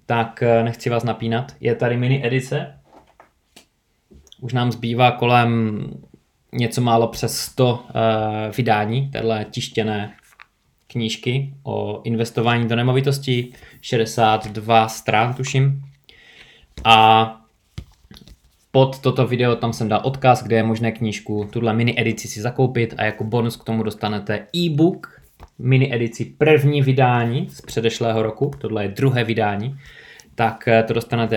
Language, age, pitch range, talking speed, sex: Czech, 20-39, 110-130 Hz, 125 wpm, male